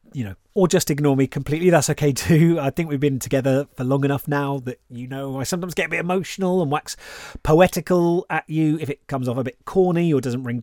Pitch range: 125-170 Hz